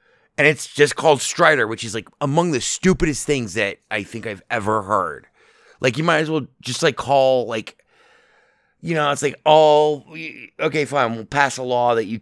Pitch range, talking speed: 115-155 Hz, 195 wpm